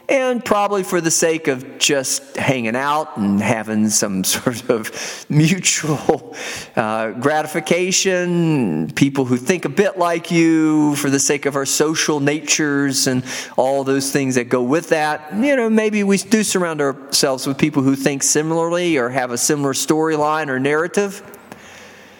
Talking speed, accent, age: 155 wpm, American, 40-59